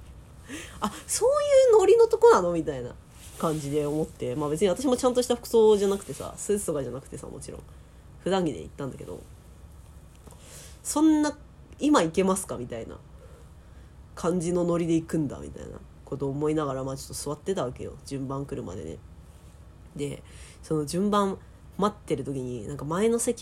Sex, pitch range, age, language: female, 125-180 Hz, 20-39, Japanese